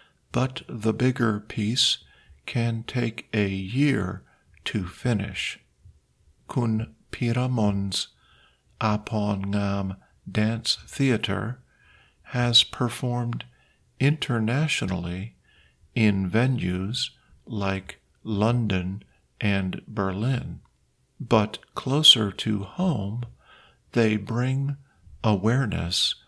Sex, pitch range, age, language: male, 100-125 Hz, 50-69, Thai